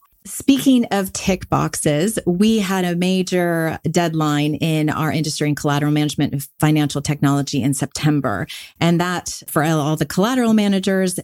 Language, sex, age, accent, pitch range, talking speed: English, female, 30-49, American, 150-190 Hz, 145 wpm